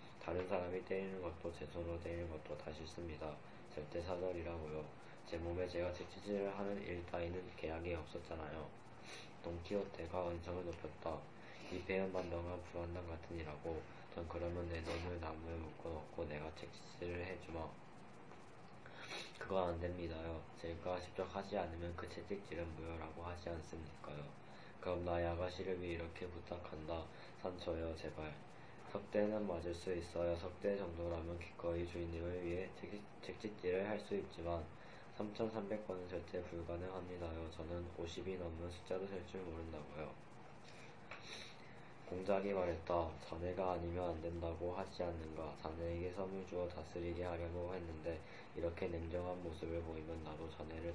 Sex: male